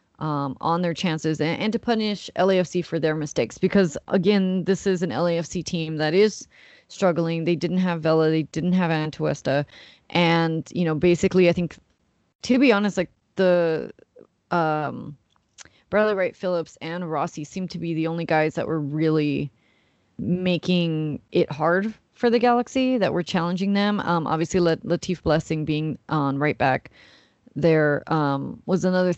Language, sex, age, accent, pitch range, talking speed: English, female, 30-49, American, 155-185 Hz, 160 wpm